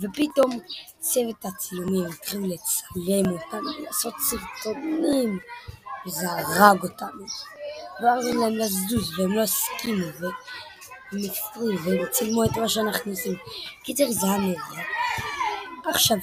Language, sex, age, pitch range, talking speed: Hebrew, female, 20-39, 200-285 Hz, 110 wpm